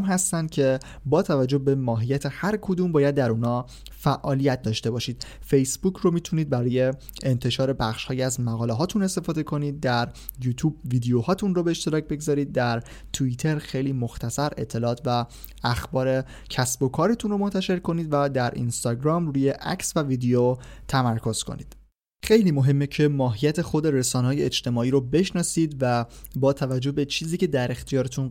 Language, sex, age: Persian, male, 20-39